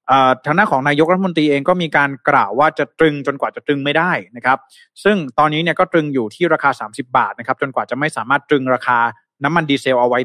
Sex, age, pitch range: male, 20-39, 130-160 Hz